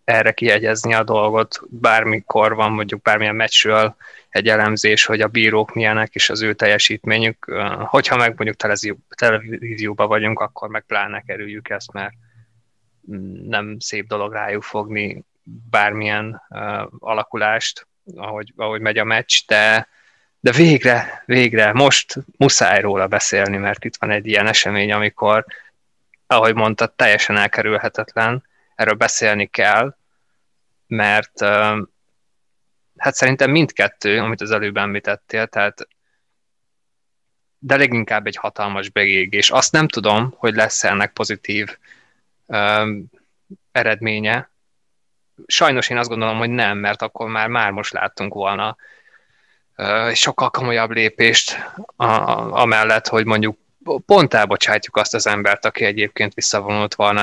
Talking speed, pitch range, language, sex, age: 125 wpm, 105-115 Hz, Hungarian, male, 20-39